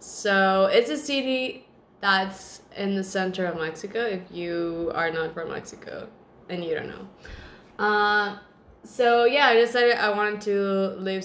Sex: female